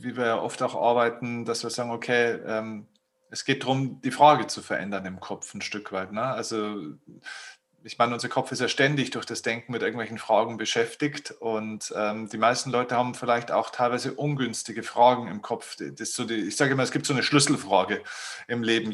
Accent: German